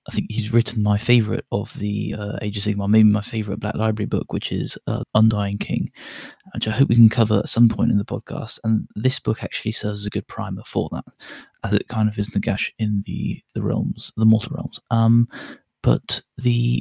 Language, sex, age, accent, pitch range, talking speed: English, male, 20-39, British, 105-120 Hz, 225 wpm